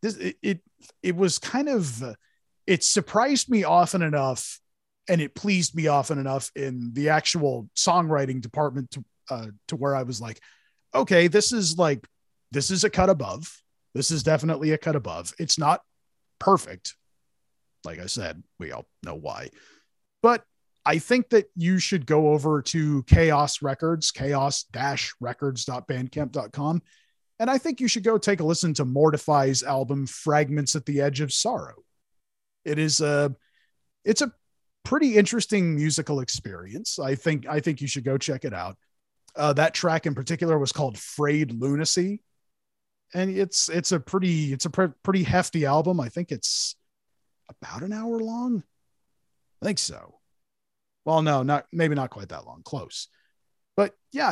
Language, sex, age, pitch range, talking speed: English, male, 30-49, 135-180 Hz, 160 wpm